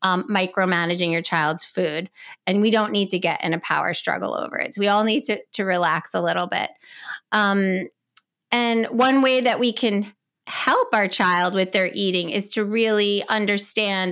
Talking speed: 185 wpm